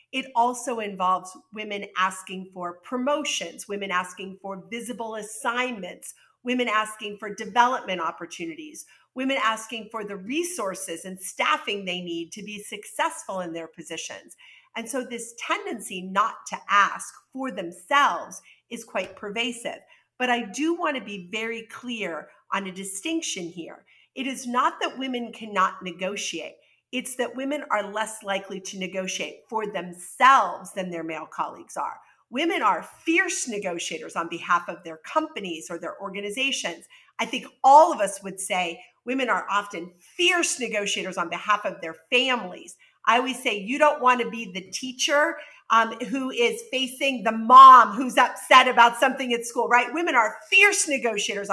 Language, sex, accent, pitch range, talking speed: English, female, American, 190-260 Hz, 155 wpm